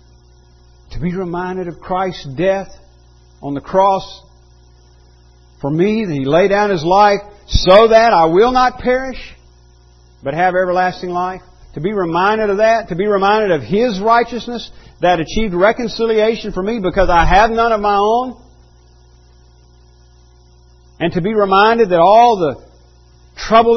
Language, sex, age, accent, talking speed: English, male, 50-69, American, 145 wpm